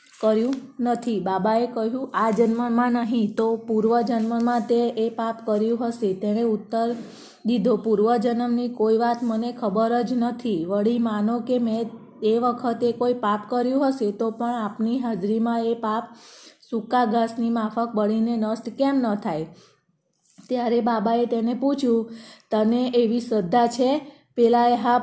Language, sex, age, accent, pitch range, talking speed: Gujarati, female, 20-39, native, 220-245 Hz, 140 wpm